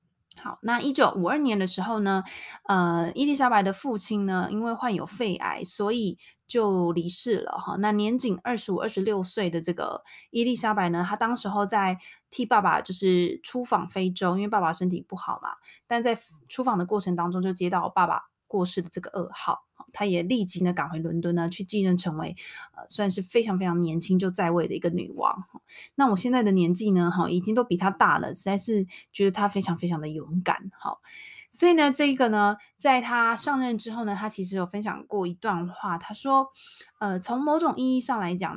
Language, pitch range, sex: Chinese, 180-235 Hz, female